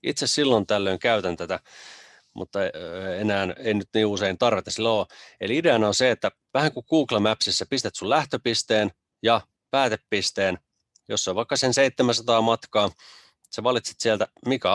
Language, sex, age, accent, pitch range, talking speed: Finnish, male, 30-49, native, 100-115 Hz, 160 wpm